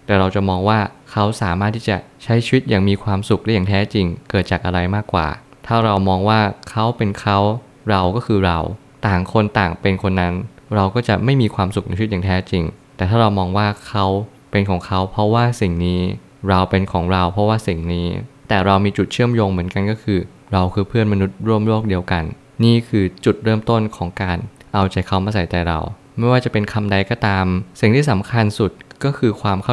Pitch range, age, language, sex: 95-110 Hz, 20-39, Thai, male